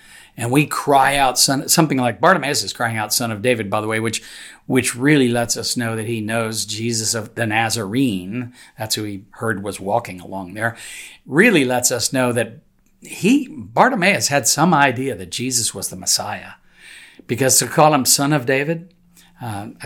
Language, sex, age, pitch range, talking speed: English, male, 50-69, 110-150 Hz, 180 wpm